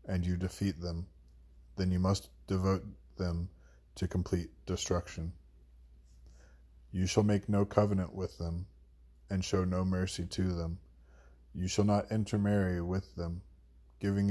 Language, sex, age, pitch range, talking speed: English, male, 20-39, 70-95 Hz, 135 wpm